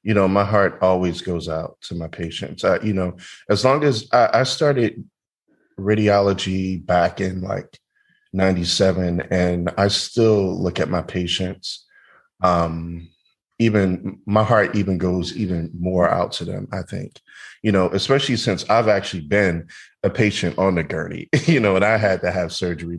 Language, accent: English, American